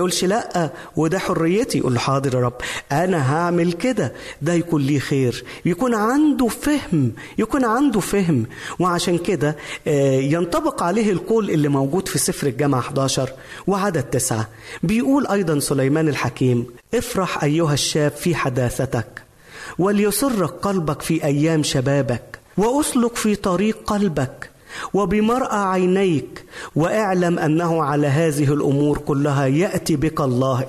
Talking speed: 125 wpm